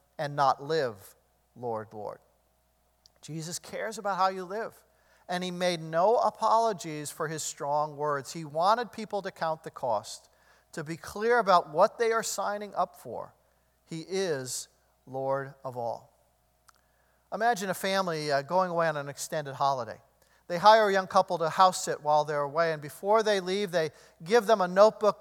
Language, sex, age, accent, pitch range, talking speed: English, male, 50-69, American, 155-200 Hz, 170 wpm